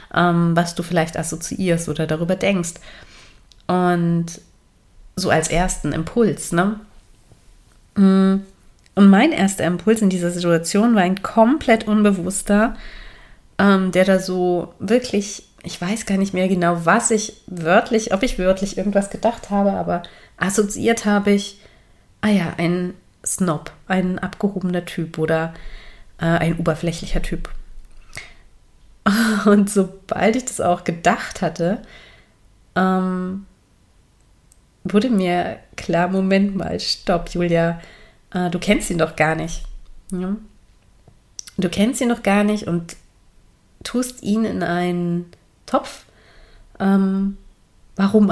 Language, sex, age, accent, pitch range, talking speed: German, female, 30-49, German, 170-205 Hz, 110 wpm